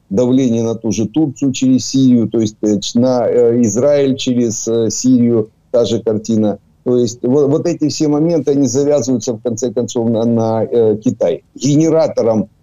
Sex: male